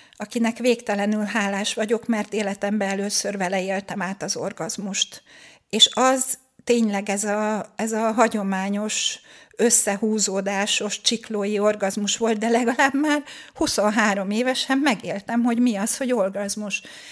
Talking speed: 120 wpm